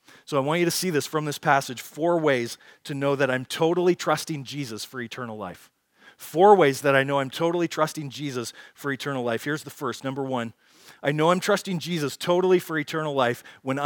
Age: 40-59